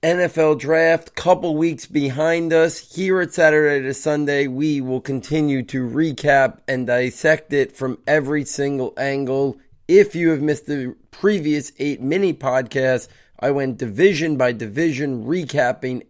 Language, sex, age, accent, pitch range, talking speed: English, male, 30-49, American, 125-155 Hz, 140 wpm